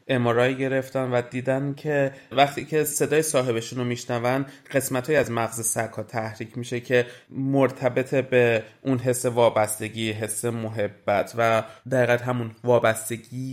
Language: Persian